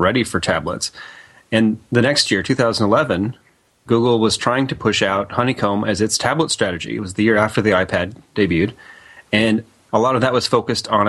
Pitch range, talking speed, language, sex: 105-120 Hz, 190 wpm, English, male